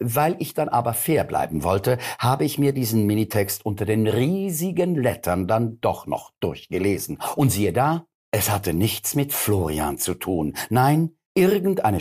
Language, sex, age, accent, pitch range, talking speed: German, male, 50-69, German, 110-160 Hz, 160 wpm